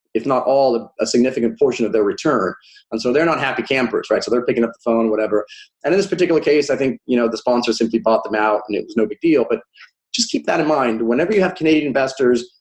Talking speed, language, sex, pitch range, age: 260 wpm, English, male, 120-145 Hz, 30-49